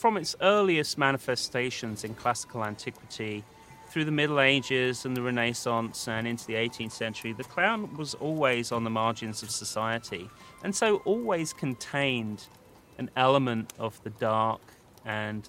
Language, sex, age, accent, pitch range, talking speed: English, male, 30-49, British, 110-135 Hz, 145 wpm